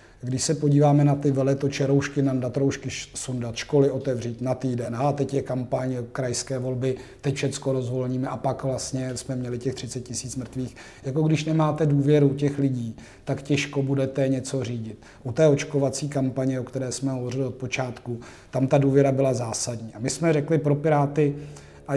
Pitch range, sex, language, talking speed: 125-145 Hz, male, Slovak, 180 wpm